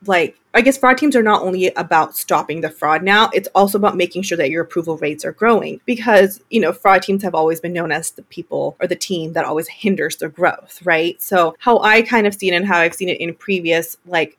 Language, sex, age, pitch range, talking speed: English, female, 20-39, 170-220 Hz, 250 wpm